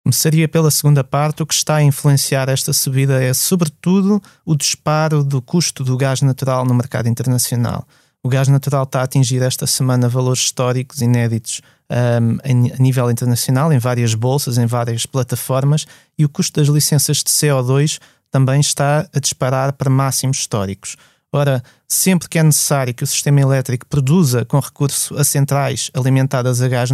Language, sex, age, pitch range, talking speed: Portuguese, male, 20-39, 130-150 Hz, 165 wpm